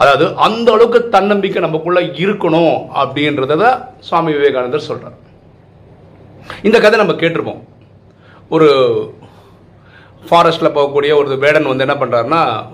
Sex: male